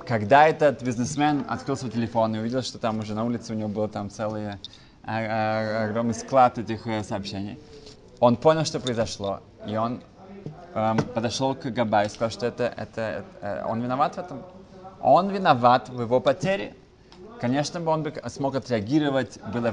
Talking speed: 170 wpm